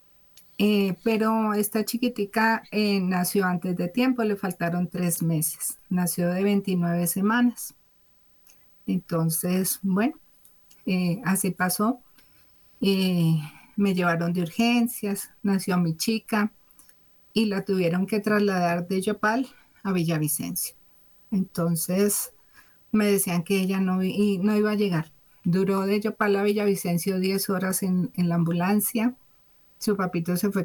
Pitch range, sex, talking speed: 180-210 Hz, female, 125 wpm